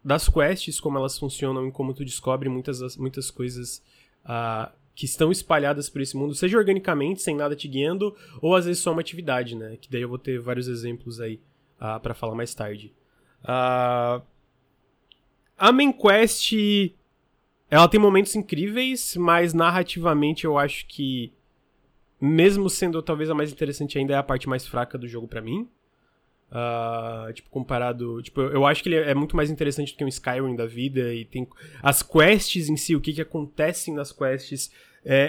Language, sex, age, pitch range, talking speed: Portuguese, male, 20-39, 130-155 Hz, 175 wpm